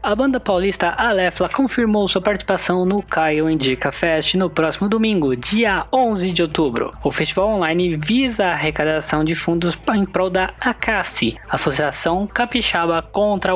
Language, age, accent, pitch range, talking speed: Portuguese, 20-39, Brazilian, 155-210 Hz, 145 wpm